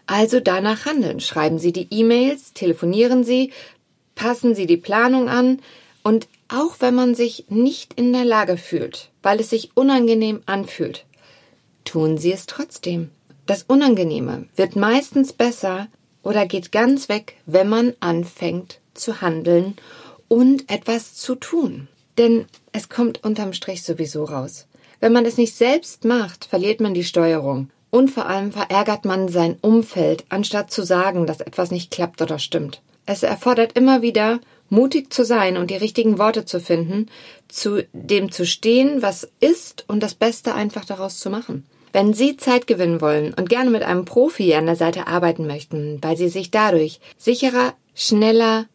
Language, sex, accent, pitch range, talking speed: German, female, German, 175-235 Hz, 160 wpm